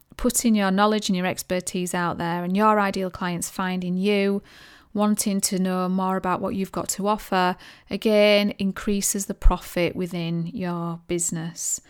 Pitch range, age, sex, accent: 180-210 Hz, 30-49, female, British